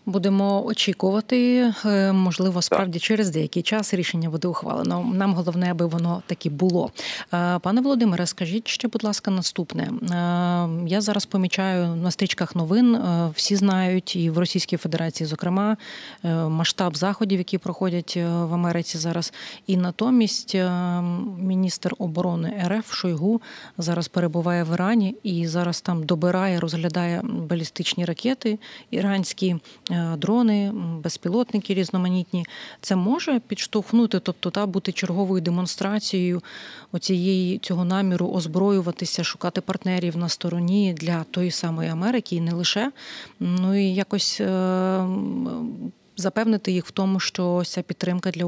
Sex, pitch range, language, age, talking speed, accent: female, 175-200 Hz, Ukrainian, 30-49, 125 wpm, native